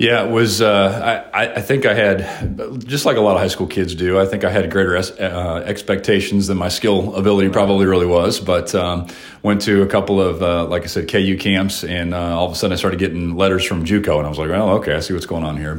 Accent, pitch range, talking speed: American, 80-100 Hz, 265 wpm